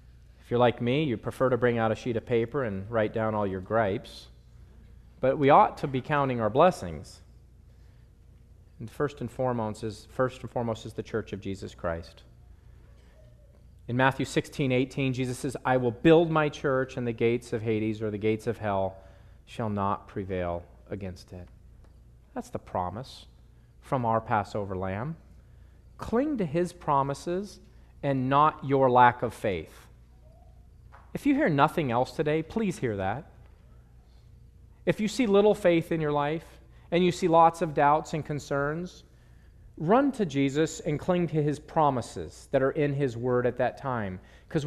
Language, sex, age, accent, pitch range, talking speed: English, male, 40-59, American, 110-170 Hz, 165 wpm